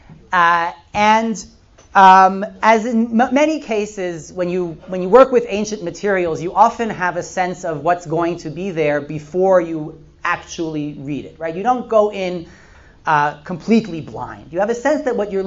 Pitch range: 155-210 Hz